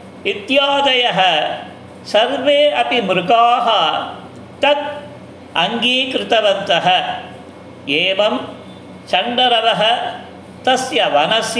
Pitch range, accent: 210-260 Hz, native